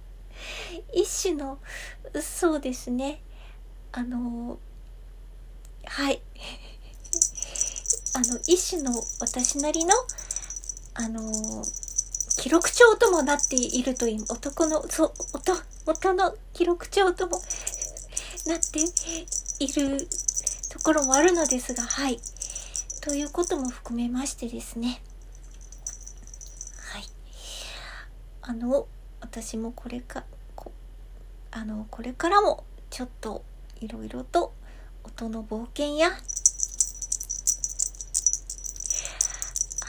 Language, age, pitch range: Japanese, 40-59, 245-330 Hz